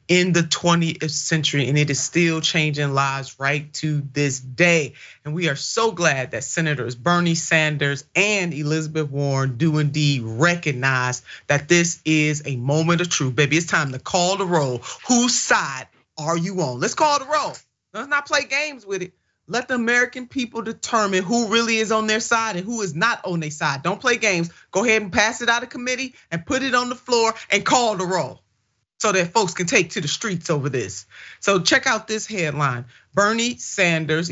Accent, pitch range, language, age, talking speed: American, 150-205 Hz, English, 30-49, 200 wpm